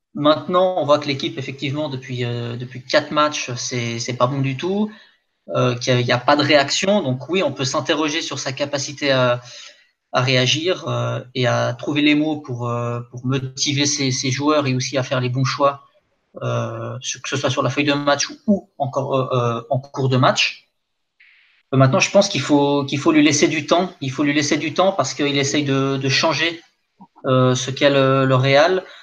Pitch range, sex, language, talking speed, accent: 130-150 Hz, male, French, 210 wpm, French